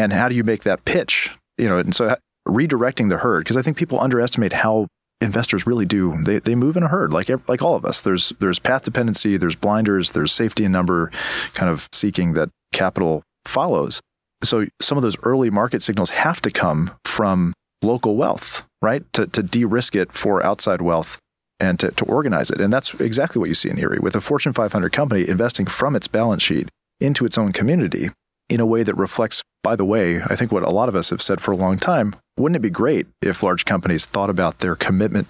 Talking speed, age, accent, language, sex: 220 wpm, 40-59, American, English, male